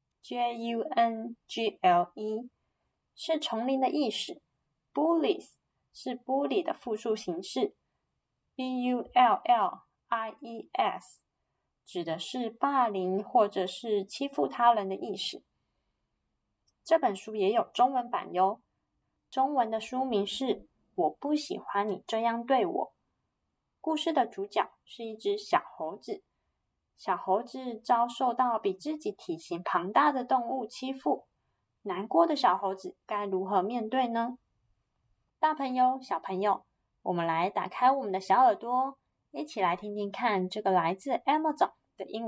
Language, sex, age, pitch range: Chinese, female, 20-39, 205-280 Hz